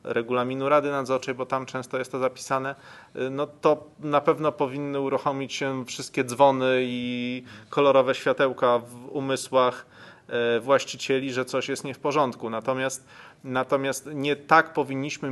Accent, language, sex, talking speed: native, Polish, male, 135 wpm